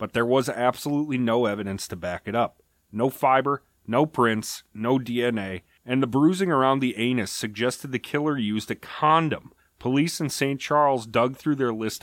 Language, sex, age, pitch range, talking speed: English, male, 30-49, 110-145 Hz, 180 wpm